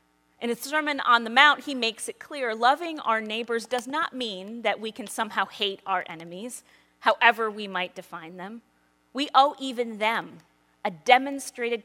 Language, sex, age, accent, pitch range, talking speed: English, female, 30-49, American, 160-235 Hz, 170 wpm